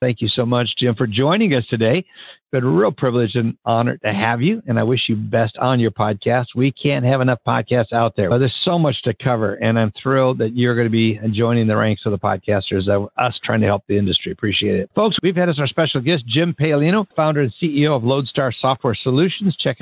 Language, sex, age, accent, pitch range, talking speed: English, male, 60-79, American, 120-160 Hz, 240 wpm